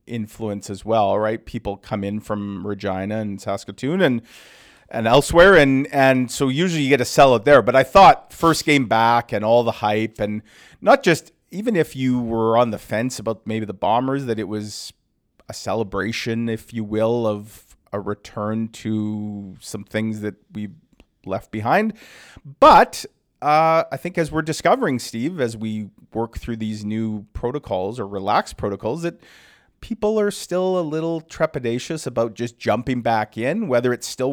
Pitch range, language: 105-140 Hz, English